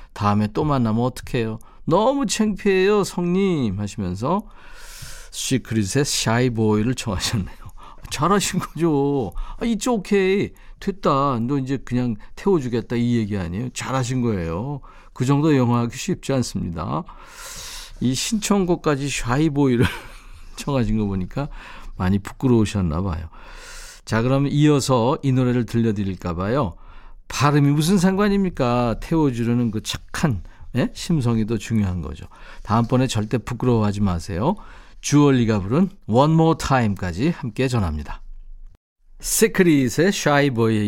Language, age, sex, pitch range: Korean, 50-69, male, 105-145 Hz